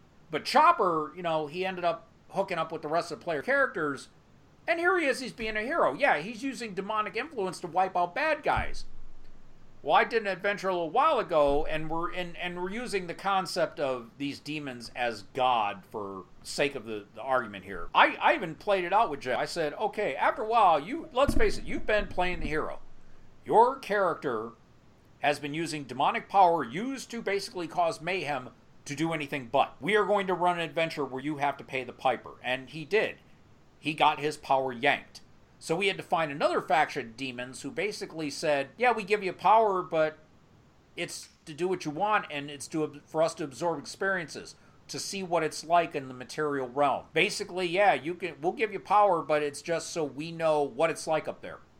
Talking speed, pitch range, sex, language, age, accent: 215 wpm, 145-195 Hz, male, English, 40-59, American